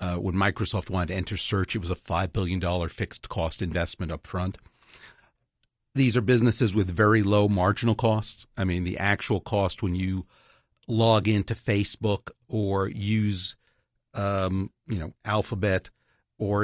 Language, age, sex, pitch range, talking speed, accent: English, 50-69, male, 90-110 Hz, 150 wpm, American